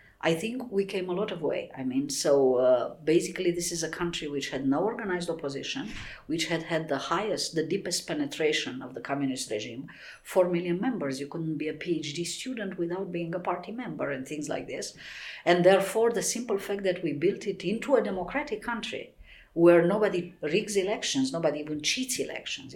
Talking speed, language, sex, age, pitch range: 190 wpm, English, female, 50-69, 155-210 Hz